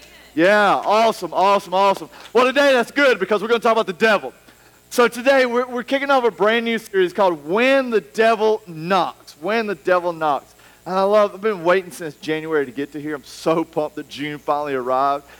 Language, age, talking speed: English, 40-59, 210 wpm